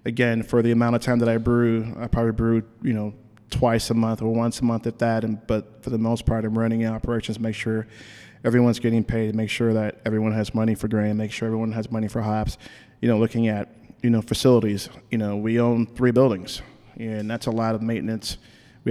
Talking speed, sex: 230 wpm, male